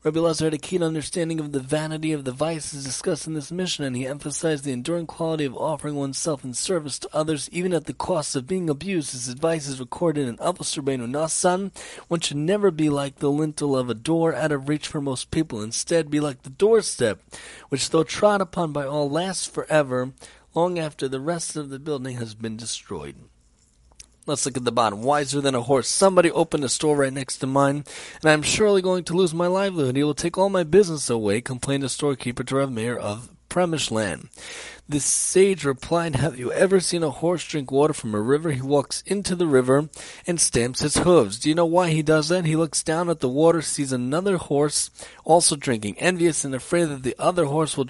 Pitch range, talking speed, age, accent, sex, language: 130-165 Hz, 215 wpm, 30-49, American, male, English